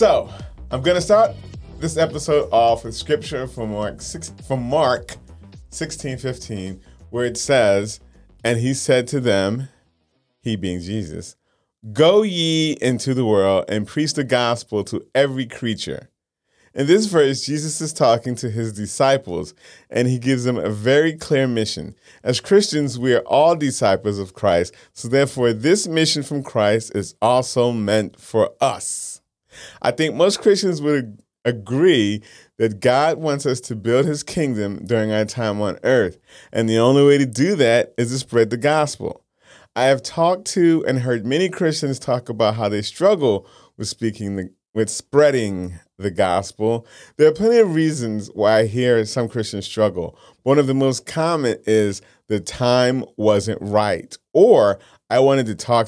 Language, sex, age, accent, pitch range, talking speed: English, male, 30-49, American, 105-140 Hz, 160 wpm